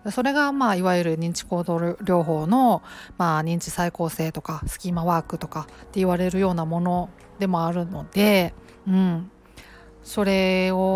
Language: Japanese